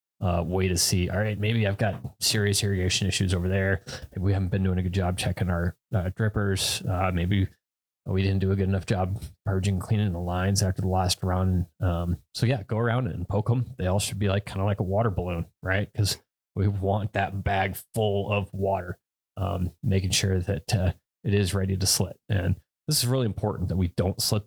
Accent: American